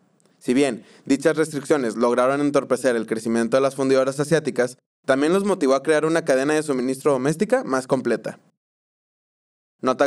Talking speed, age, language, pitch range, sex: 150 wpm, 20-39, Spanish, 130-165 Hz, male